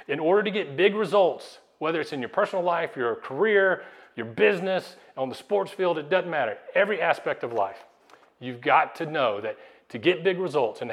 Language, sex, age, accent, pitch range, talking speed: English, male, 40-59, American, 135-185 Hz, 205 wpm